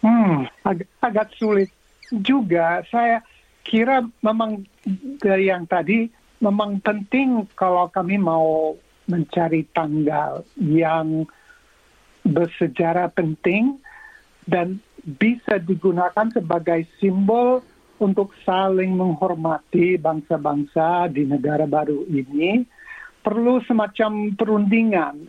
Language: Indonesian